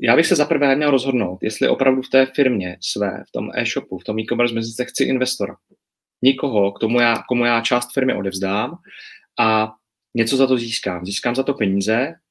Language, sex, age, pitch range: Czech, male, 30-49, 105-120 Hz